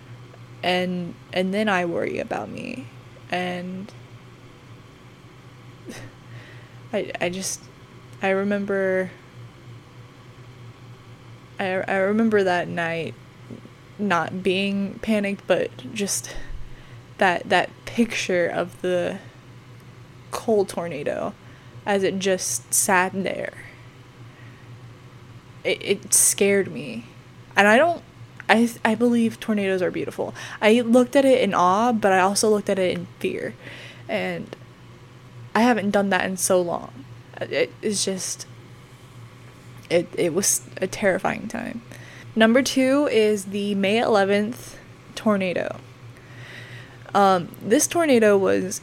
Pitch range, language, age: 125-200 Hz, English, 20-39